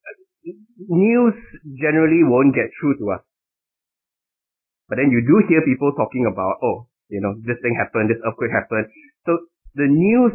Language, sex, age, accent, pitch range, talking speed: English, male, 20-39, Malaysian, 120-165 Hz, 155 wpm